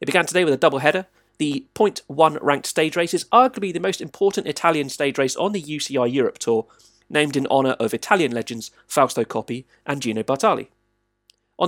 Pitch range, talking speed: 135-195 Hz, 190 wpm